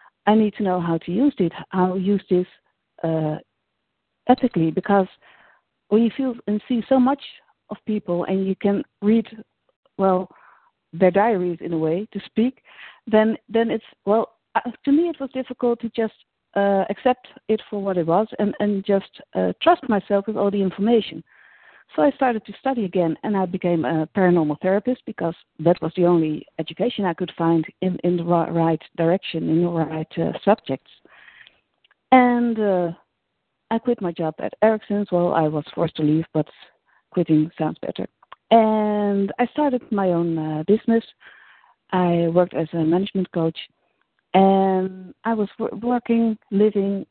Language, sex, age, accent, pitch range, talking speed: English, female, 50-69, Dutch, 175-225 Hz, 170 wpm